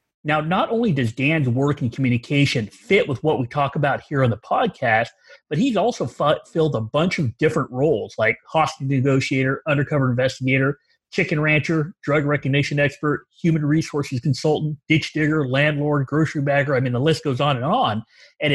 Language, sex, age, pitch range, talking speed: English, male, 30-49, 130-160 Hz, 175 wpm